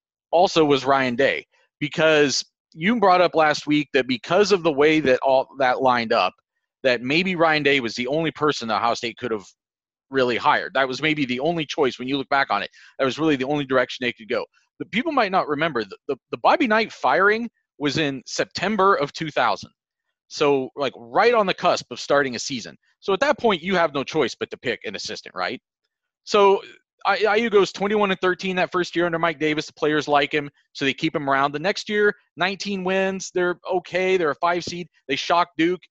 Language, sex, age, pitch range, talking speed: English, male, 30-49, 135-180 Hz, 220 wpm